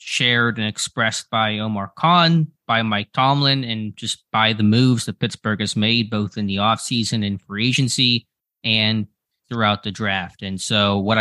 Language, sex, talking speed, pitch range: English, male, 170 wpm, 105-120 Hz